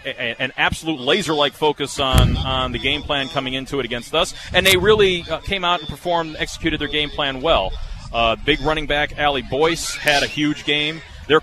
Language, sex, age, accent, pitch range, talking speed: English, male, 30-49, American, 130-165 Hz, 210 wpm